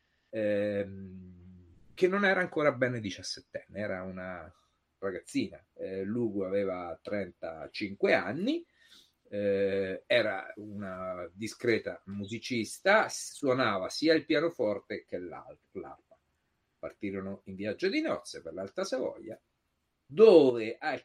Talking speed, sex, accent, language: 100 wpm, male, native, Italian